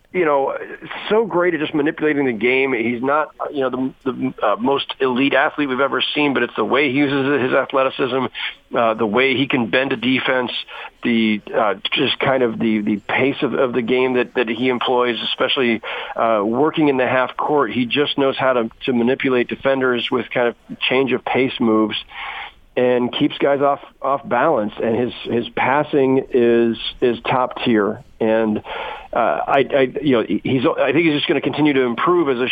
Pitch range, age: 115-135 Hz, 40-59